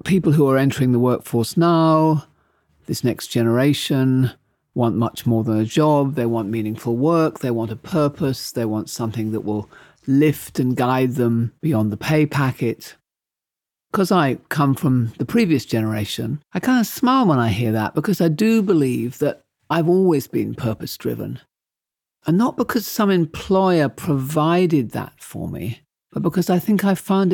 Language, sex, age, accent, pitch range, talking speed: English, male, 50-69, British, 120-170 Hz, 165 wpm